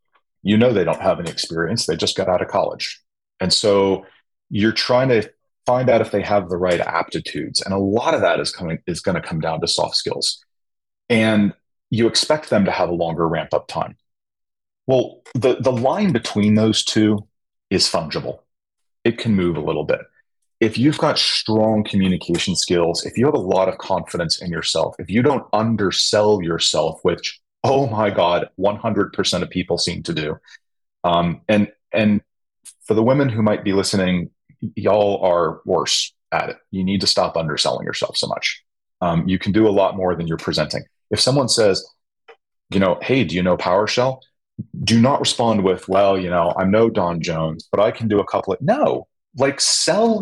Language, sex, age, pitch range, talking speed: English, male, 30-49, 95-125 Hz, 190 wpm